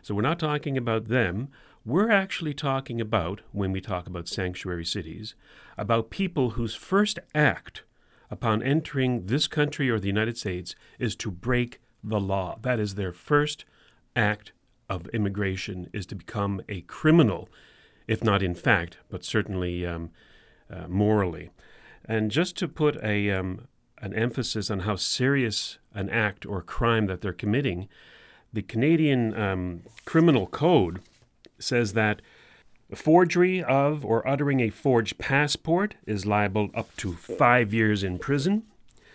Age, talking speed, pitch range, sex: 40-59, 145 wpm, 100-135 Hz, male